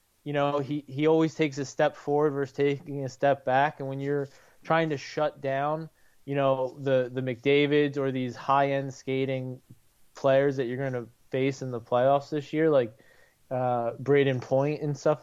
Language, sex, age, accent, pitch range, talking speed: English, male, 20-39, American, 130-155 Hz, 185 wpm